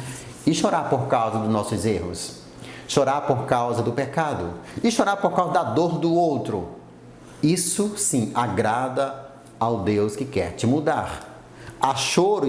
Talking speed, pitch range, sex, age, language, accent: 150 wpm, 120-155 Hz, male, 30-49, Portuguese, Brazilian